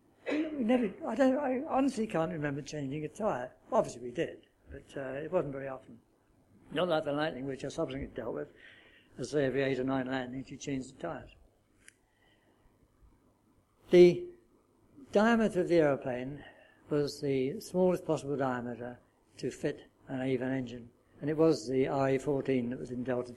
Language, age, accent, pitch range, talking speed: English, 60-79, British, 130-165 Hz, 165 wpm